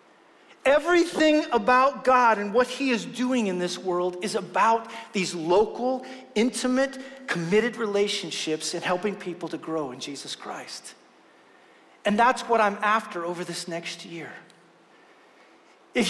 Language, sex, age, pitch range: English, male, 40-59, 205-265 Hz